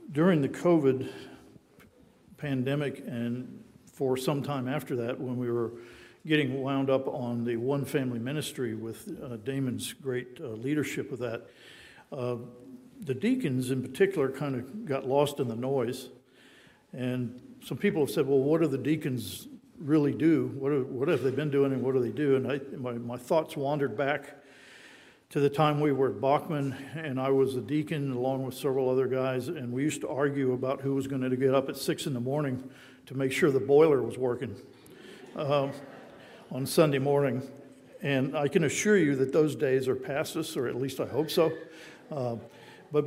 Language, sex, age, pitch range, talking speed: English, male, 50-69, 130-150 Hz, 185 wpm